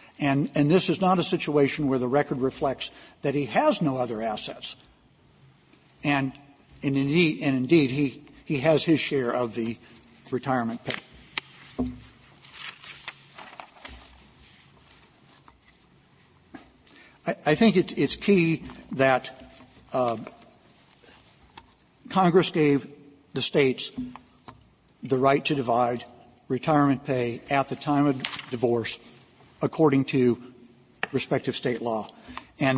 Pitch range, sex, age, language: 125-145 Hz, male, 60-79, English